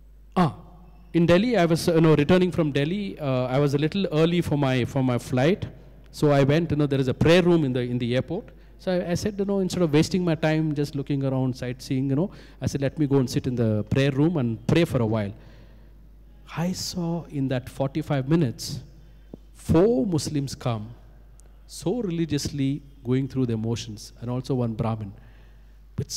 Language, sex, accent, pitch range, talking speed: English, male, Indian, 130-160 Hz, 200 wpm